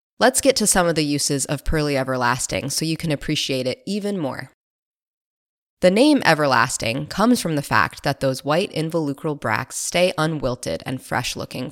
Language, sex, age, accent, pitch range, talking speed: English, female, 20-39, American, 140-190 Hz, 170 wpm